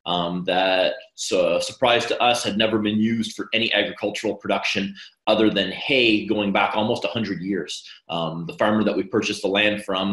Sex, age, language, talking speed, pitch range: male, 30-49, English, 190 wpm, 95-110 Hz